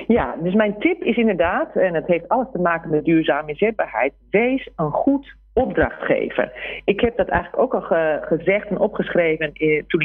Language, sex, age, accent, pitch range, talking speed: Dutch, female, 40-59, Dutch, 170-240 Hz, 175 wpm